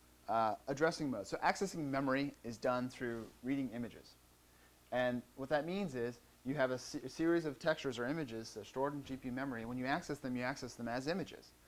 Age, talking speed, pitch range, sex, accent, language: 30-49, 215 wpm, 100-145 Hz, male, American, English